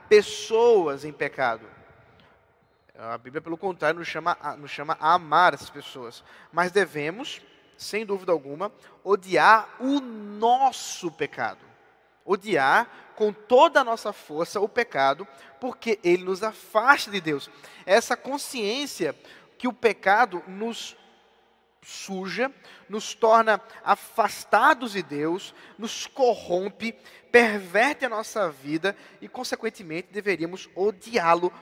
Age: 20-39